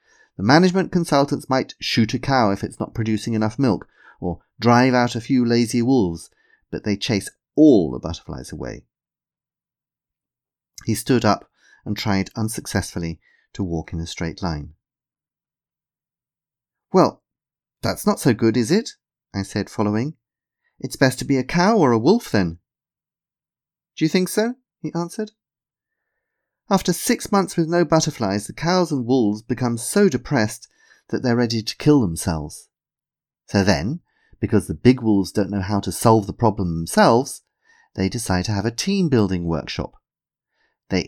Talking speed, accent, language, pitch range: 155 wpm, British, English, 100-160 Hz